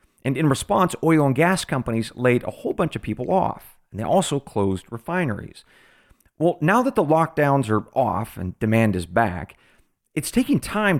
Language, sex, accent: English, male, American